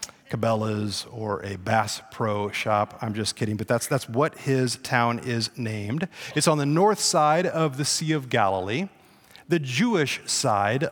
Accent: American